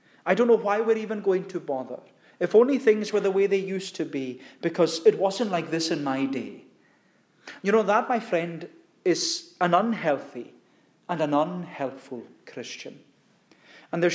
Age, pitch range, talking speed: 40-59, 140-200 Hz, 175 wpm